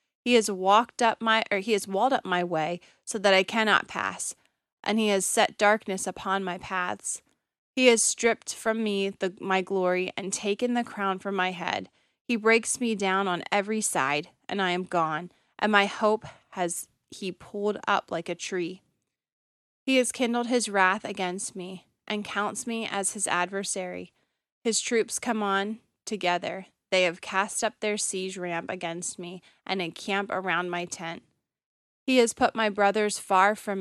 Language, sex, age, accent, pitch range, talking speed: English, female, 20-39, American, 185-220 Hz, 175 wpm